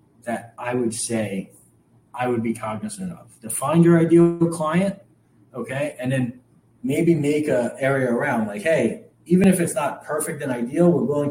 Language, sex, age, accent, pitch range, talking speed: English, male, 30-49, American, 140-185 Hz, 170 wpm